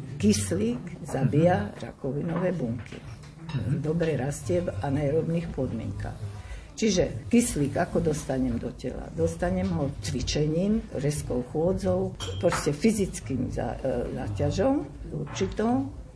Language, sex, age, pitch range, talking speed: Slovak, female, 60-79, 125-175 Hz, 95 wpm